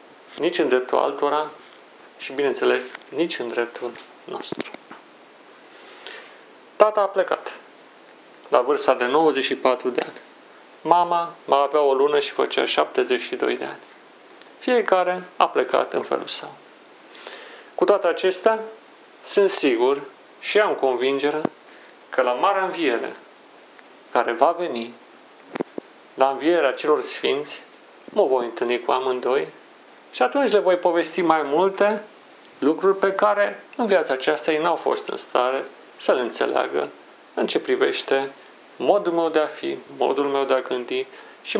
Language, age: Romanian, 40-59